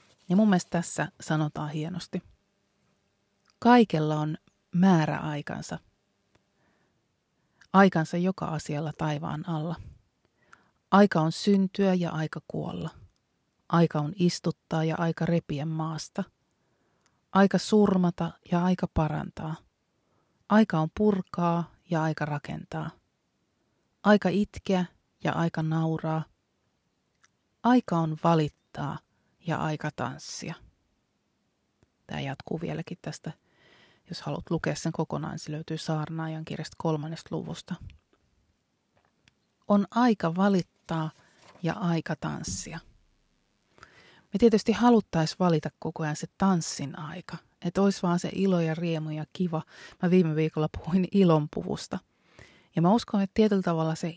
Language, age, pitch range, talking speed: Finnish, 30-49, 160-190 Hz, 110 wpm